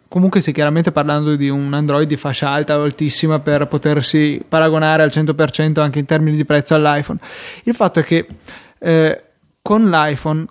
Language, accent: Italian, native